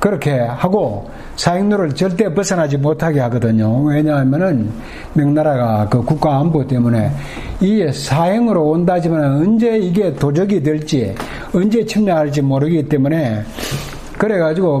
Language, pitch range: Korean, 130-195 Hz